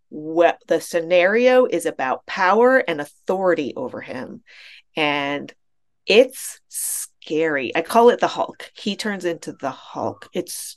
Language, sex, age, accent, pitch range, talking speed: English, female, 40-59, American, 165-225 Hz, 135 wpm